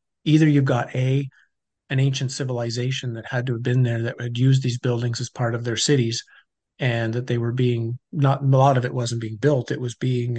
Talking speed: 225 wpm